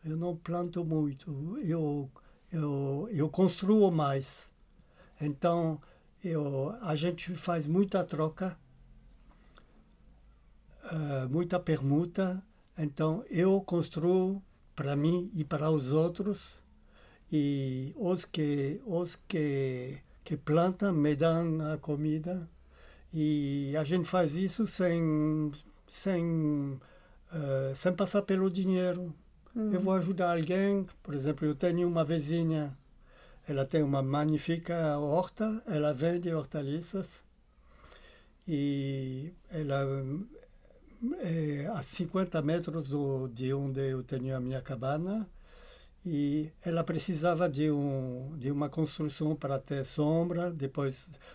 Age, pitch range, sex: 60-79, 140-175 Hz, male